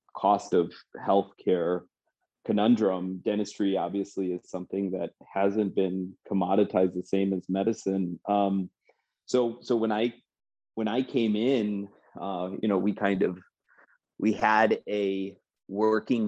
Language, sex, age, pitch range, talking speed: English, male, 30-49, 95-105 Hz, 130 wpm